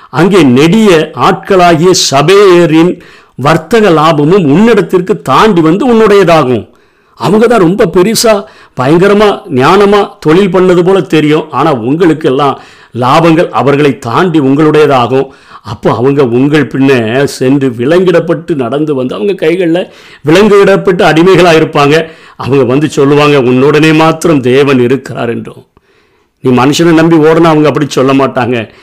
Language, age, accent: Tamil, 50-69, native